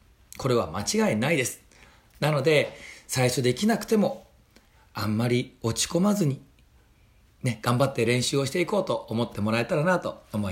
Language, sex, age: Japanese, male, 40-59